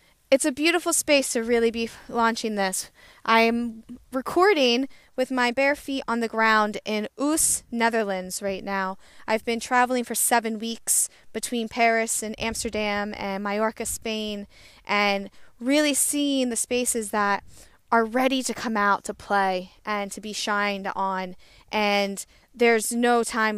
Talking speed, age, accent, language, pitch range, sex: 150 wpm, 10-29, American, English, 200-240 Hz, female